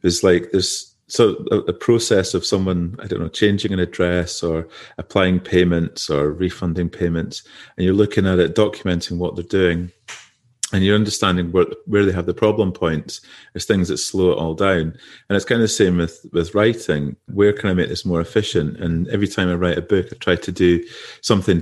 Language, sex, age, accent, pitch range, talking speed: English, male, 30-49, British, 85-100 Hz, 210 wpm